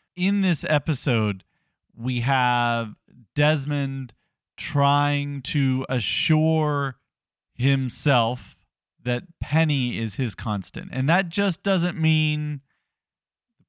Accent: American